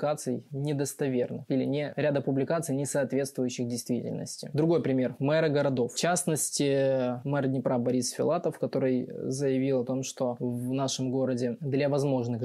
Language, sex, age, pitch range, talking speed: Russian, male, 20-39, 125-145 Hz, 135 wpm